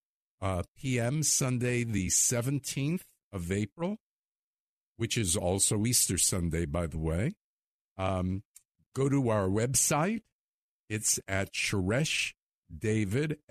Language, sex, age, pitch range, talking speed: English, male, 50-69, 95-130 Hz, 100 wpm